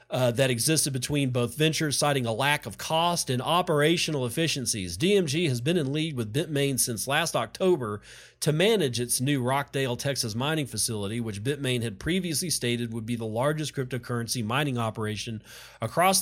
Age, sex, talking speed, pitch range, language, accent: 40-59, male, 165 wpm, 115-145 Hz, English, American